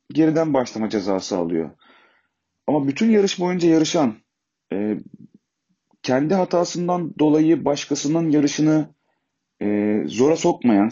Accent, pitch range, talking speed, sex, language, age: native, 120-160 Hz, 100 wpm, male, Turkish, 40-59